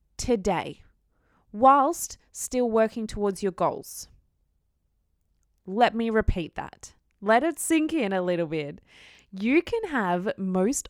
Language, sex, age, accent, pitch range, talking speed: English, female, 20-39, Australian, 155-260 Hz, 120 wpm